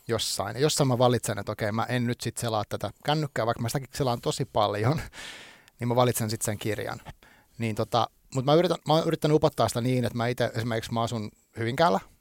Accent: native